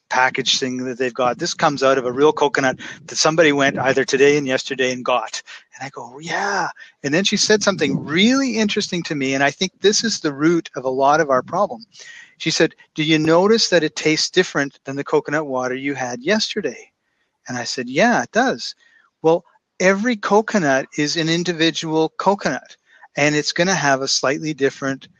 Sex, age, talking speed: male, 40-59, 200 wpm